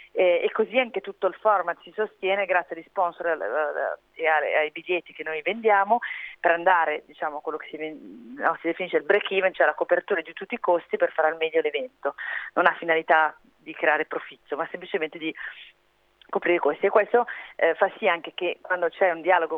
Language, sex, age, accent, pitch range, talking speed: Italian, female, 30-49, native, 165-210 Hz, 195 wpm